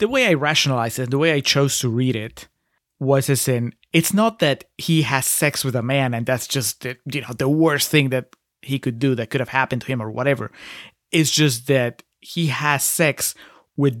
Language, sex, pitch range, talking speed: English, male, 130-155 Hz, 225 wpm